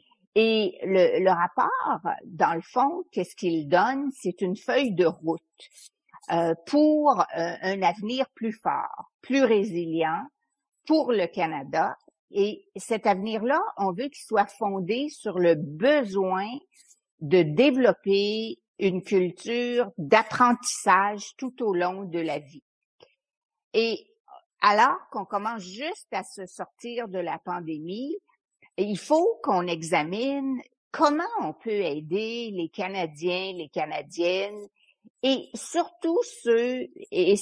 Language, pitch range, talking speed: English, 185-275 Hz, 120 wpm